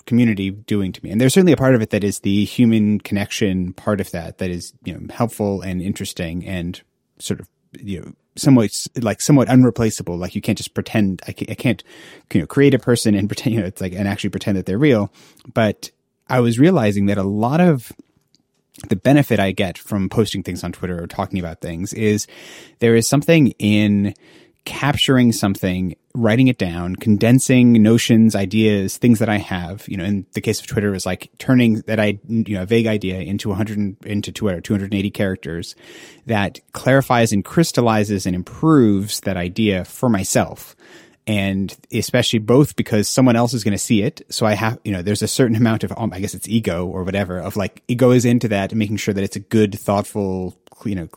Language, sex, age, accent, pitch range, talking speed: English, male, 30-49, American, 95-115 Hz, 210 wpm